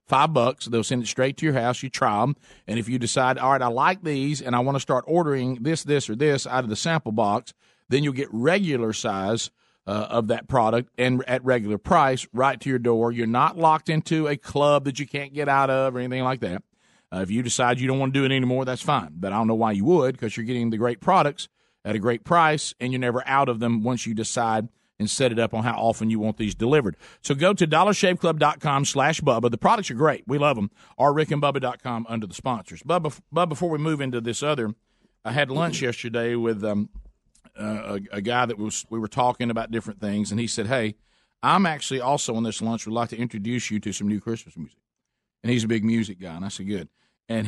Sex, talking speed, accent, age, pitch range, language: male, 245 wpm, American, 40-59, 110-140 Hz, English